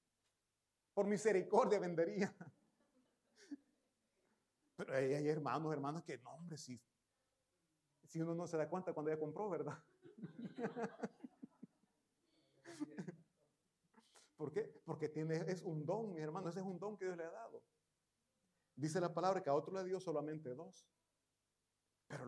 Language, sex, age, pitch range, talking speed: Italian, male, 40-59, 145-195 Hz, 135 wpm